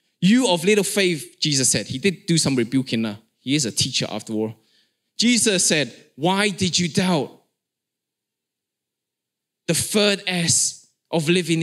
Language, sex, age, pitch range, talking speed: English, male, 20-39, 155-220 Hz, 150 wpm